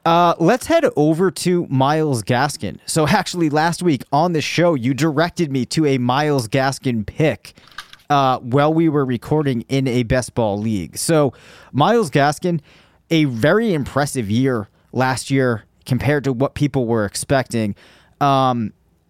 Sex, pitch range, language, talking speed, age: male, 120-150 Hz, English, 150 wpm, 30-49